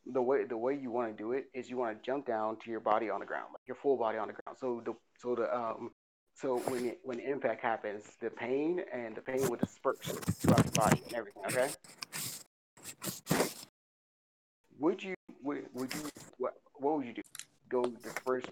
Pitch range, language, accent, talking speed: 115-130 Hz, English, American, 215 wpm